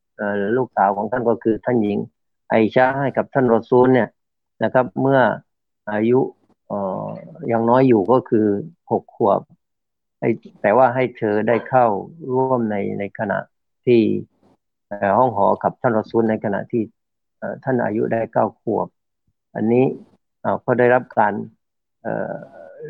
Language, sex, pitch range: Thai, male, 105-125 Hz